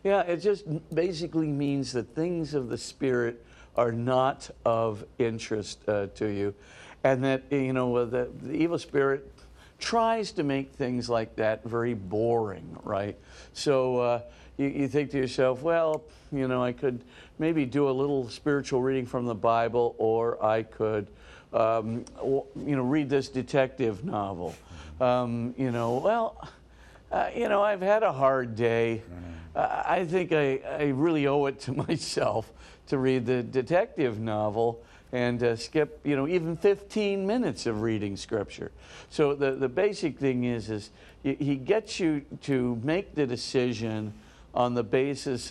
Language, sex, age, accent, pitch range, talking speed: English, male, 50-69, American, 115-145 Hz, 160 wpm